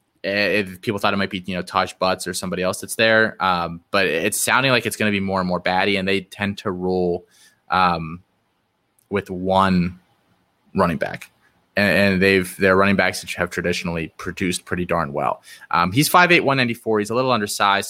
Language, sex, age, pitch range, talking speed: English, male, 20-39, 90-110 Hz, 200 wpm